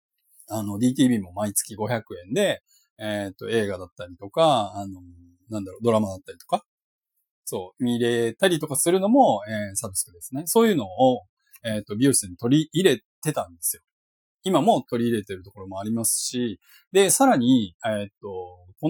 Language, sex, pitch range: Japanese, male, 100-165 Hz